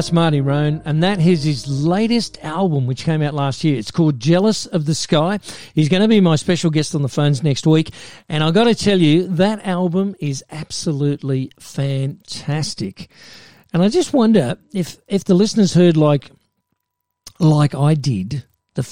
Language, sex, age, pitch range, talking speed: English, male, 50-69, 140-180 Hz, 180 wpm